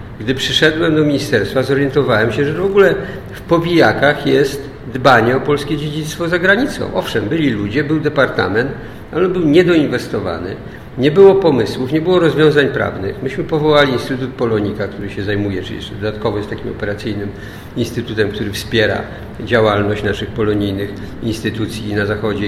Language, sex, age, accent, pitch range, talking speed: Polish, male, 50-69, native, 105-140 Hz, 145 wpm